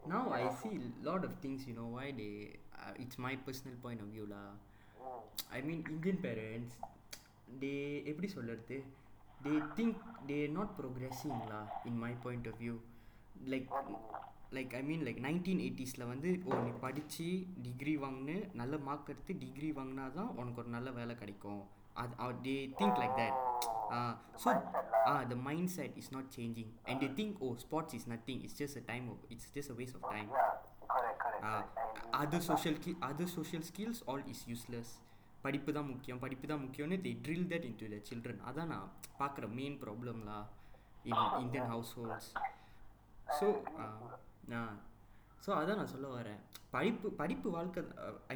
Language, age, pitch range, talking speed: Tamil, 20-39, 115-145 Hz, 170 wpm